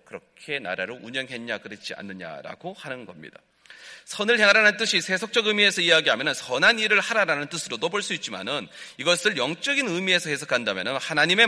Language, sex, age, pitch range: Korean, male, 30-49, 140-210 Hz